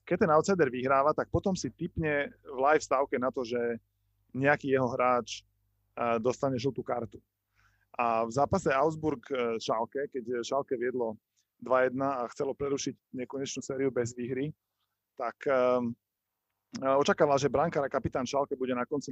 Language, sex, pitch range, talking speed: Slovak, male, 115-135 Hz, 145 wpm